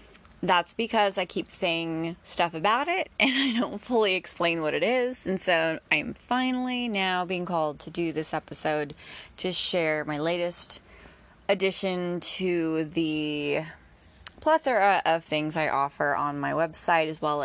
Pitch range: 155-205 Hz